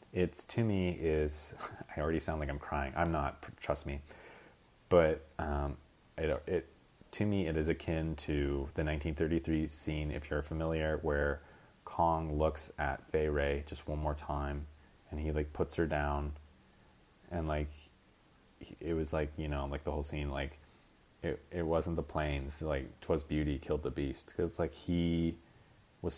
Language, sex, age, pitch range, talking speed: English, male, 30-49, 75-95 Hz, 165 wpm